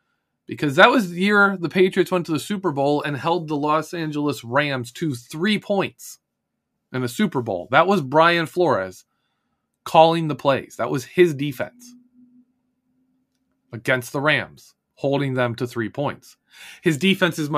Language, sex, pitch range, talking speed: English, male, 130-180 Hz, 155 wpm